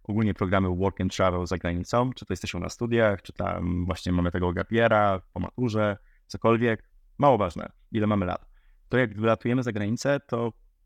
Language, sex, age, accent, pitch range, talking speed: Polish, male, 20-39, native, 90-110 Hz, 175 wpm